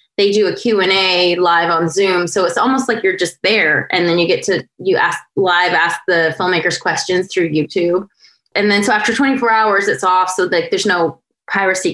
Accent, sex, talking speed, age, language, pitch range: American, female, 215 wpm, 20-39, English, 160-215 Hz